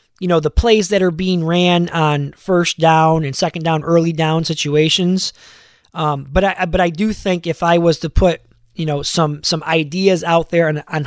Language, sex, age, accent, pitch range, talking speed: English, male, 20-39, American, 155-190 Hz, 205 wpm